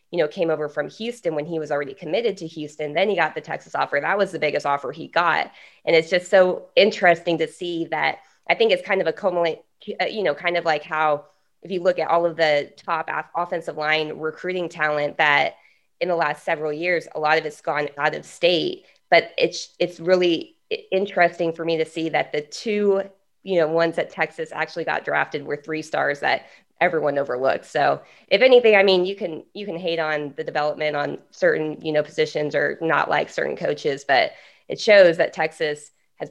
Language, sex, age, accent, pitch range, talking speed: English, female, 20-39, American, 150-180 Hz, 210 wpm